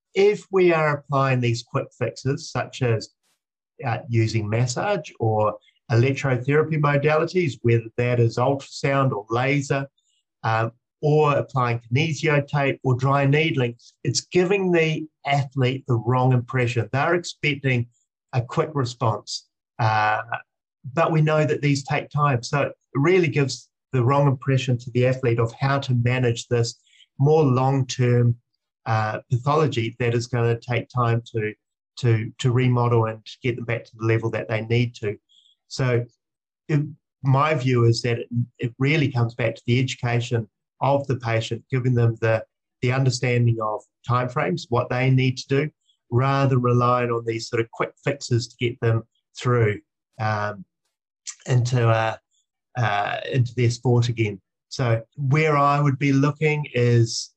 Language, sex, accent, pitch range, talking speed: English, male, Australian, 115-140 Hz, 155 wpm